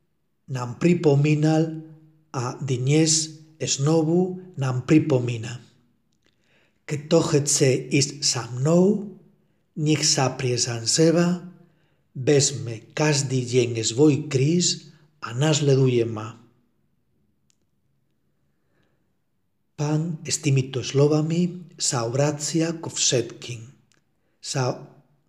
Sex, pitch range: male, 125-165 Hz